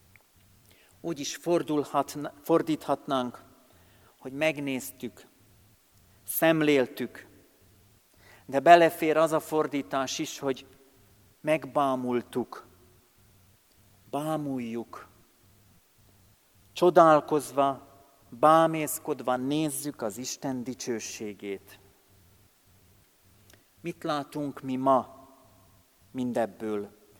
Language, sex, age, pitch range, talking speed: Hungarian, male, 40-59, 105-155 Hz, 55 wpm